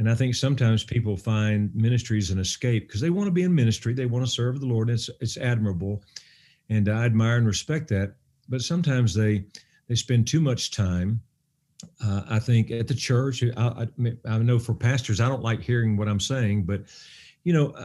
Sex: male